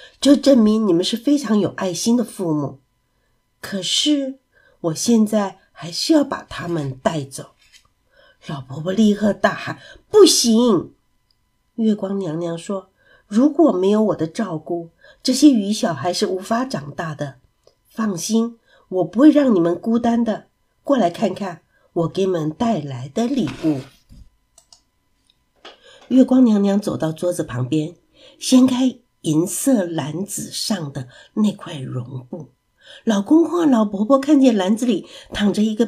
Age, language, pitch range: 50-69, Chinese, 160-255 Hz